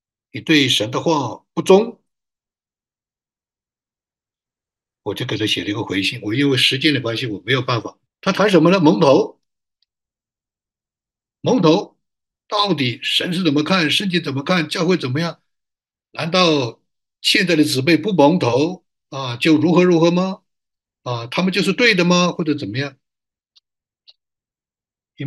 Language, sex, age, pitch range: Chinese, male, 60-79, 135-180 Hz